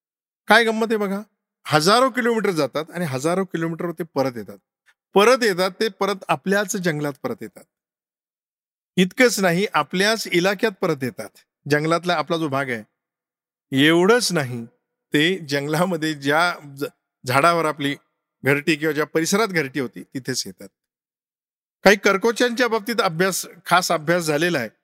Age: 50-69